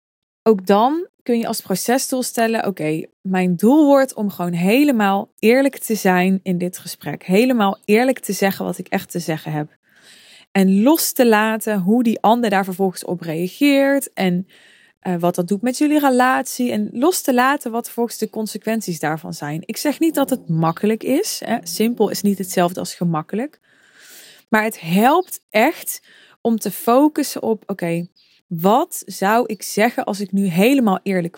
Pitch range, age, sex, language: 185-235 Hz, 20-39, female, Dutch